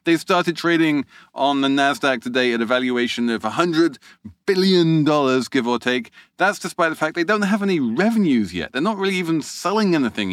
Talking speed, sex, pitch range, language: 185 wpm, male, 120-170 Hz, English